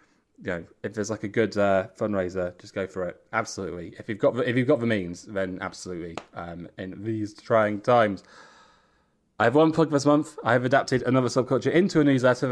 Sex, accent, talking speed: male, British, 195 wpm